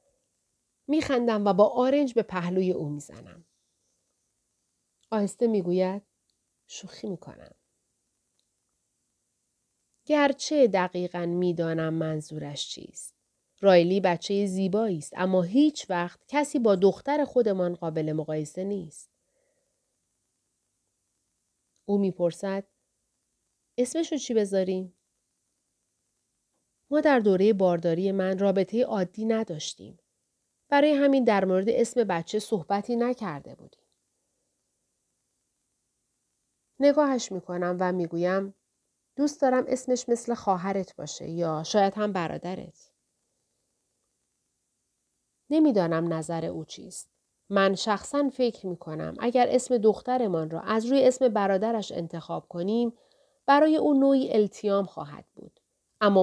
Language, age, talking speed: Persian, 40-59, 100 wpm